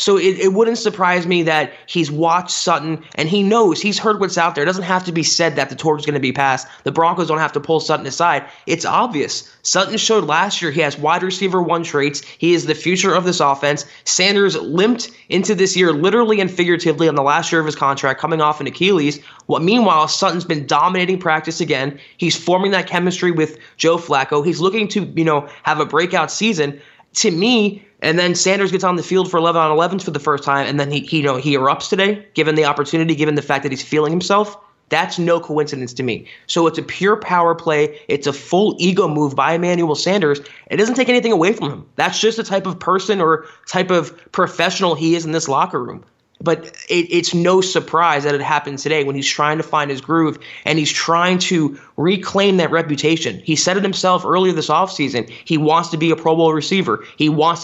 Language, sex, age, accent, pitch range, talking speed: English, male, 20-39, American, 150-185 Hz, 225 wpm